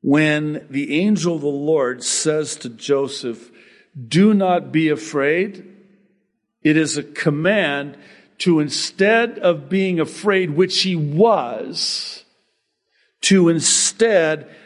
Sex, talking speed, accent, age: male, 110 wpm, American, 50-69